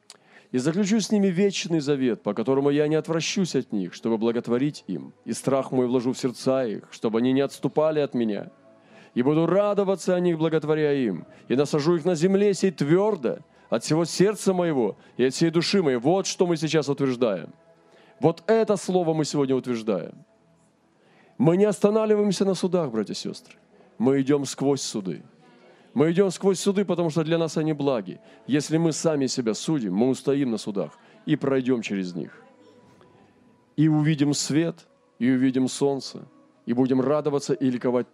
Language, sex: Russian, male